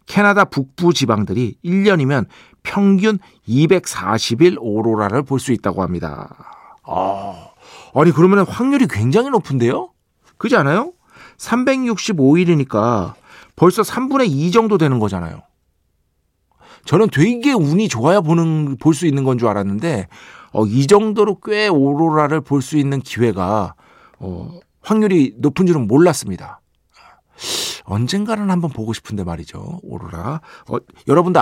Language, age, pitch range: Korean, 40-59, 105-175 Hz